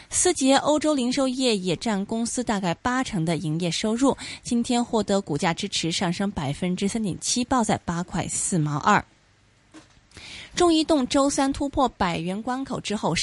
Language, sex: Chinese, female